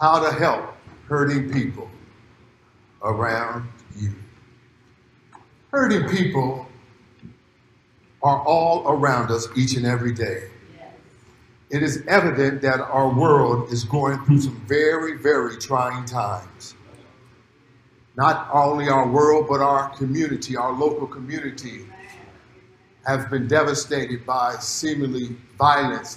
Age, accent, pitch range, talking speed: 50-69, American, 125-150 Hz, 110 wpm